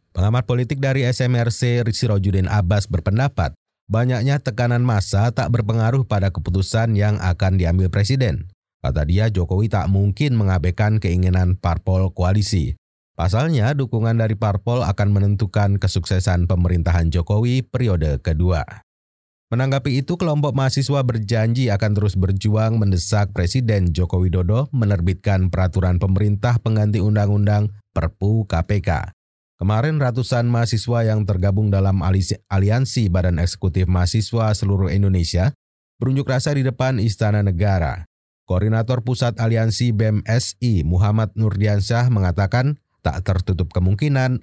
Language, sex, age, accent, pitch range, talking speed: Indonesian, male, 30-49, native, 95-120 Hz, 115 wpm